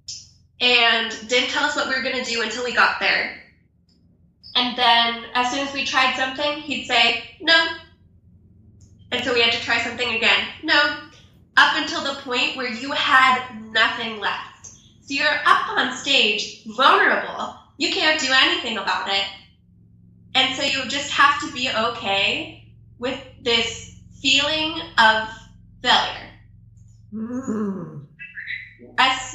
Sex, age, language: female, 20-39, English